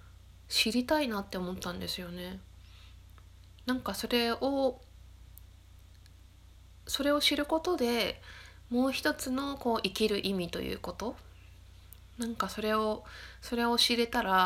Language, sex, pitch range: Japanese, female, 165-240 Hz